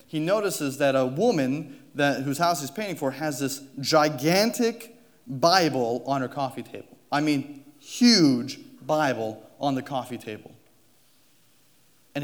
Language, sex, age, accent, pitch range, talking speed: English, male, 30-49, American, 130-205 Hz, 135 wpm